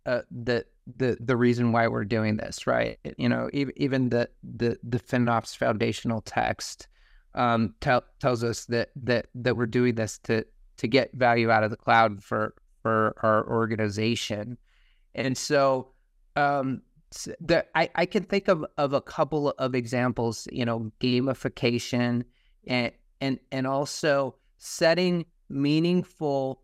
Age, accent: 30-49, American